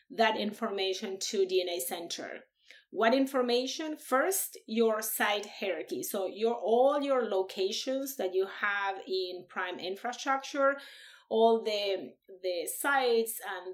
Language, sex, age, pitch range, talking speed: English, female, 30-49, 195-250 Hz, 120 wpm